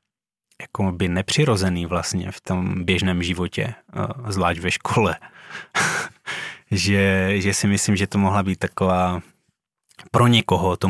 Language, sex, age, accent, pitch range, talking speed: Czech, male, 20-39, native, 90-105 Hz, 125 wpm